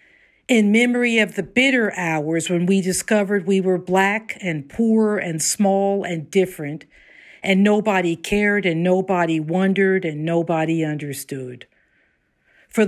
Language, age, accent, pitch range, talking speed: English, 50-69, American, 165-210 Hz, 130 wpm